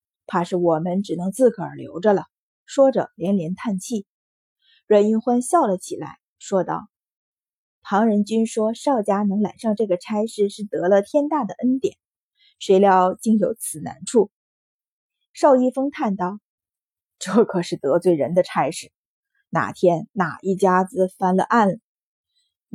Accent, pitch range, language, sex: native, 185-240 Hz, Chinese, female